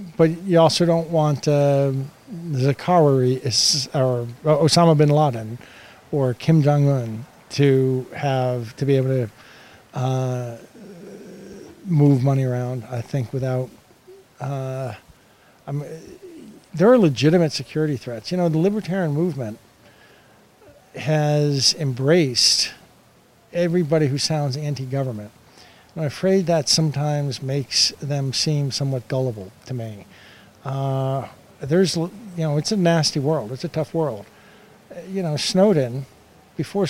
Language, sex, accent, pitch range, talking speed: English, male, American, 130-165 Hz, 120 wpm